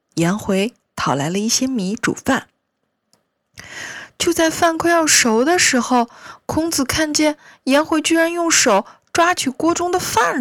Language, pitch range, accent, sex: Chinese, 165-270 Hz, native, female